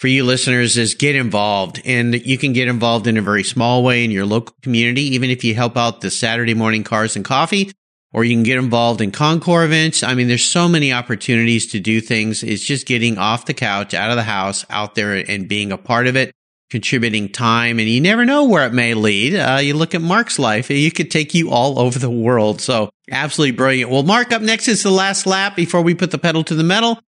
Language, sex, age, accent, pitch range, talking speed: English, male, 50-69, American, 120-195 Hz, 240 wpm